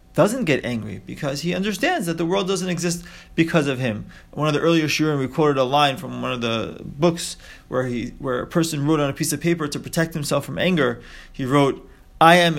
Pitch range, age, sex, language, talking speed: 135-180 Hz, 30-49, male, English, 225 wpm